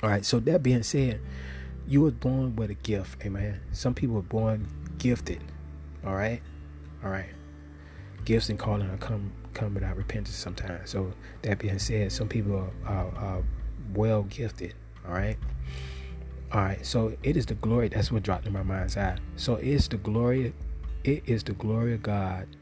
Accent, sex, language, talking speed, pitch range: American, male, English, 185 wpm, 100-120 Hz